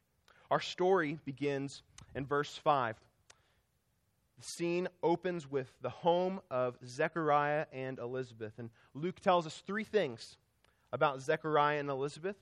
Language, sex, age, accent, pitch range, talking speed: English, male, 30-49, American, 120-170 Hz, 125 wpm